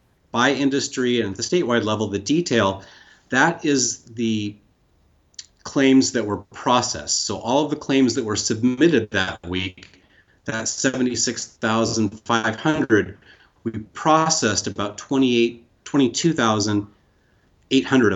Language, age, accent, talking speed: English, 30-49, American, 105 wpm